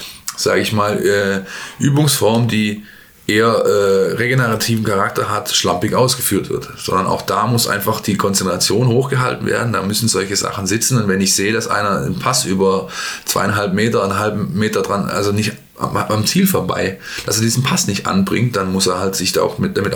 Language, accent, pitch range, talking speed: German, German, 105-120 Hz, 190 wpm